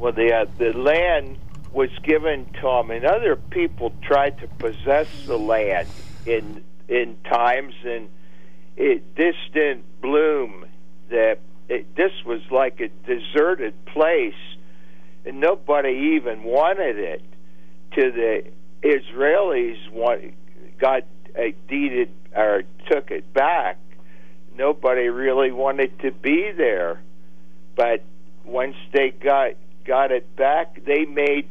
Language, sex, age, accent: English, male, 60-79, American